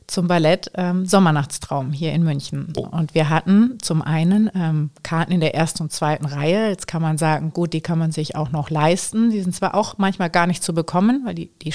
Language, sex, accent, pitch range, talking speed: German, female, German, 160-185 Hz, 225 wpm